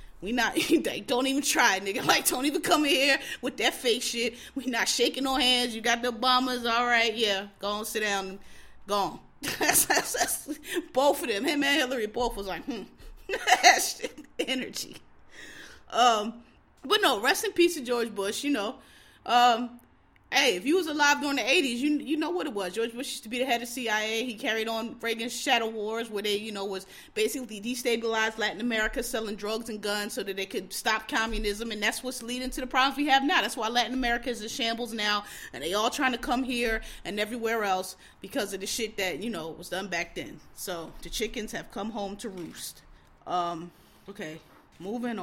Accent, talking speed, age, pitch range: American, 215 wpm, 20-39, 210-265 Hz